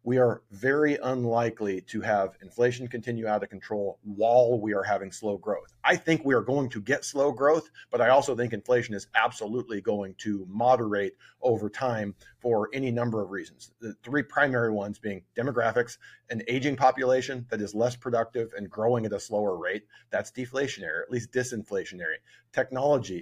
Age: 40-59